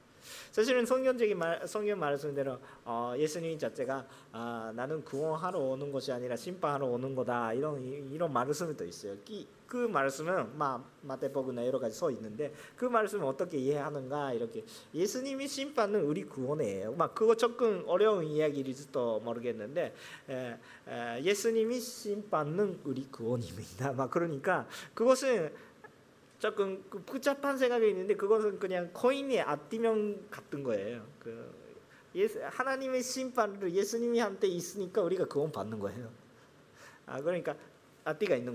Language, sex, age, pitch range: Korean, male, 40-59, 140-230 Hz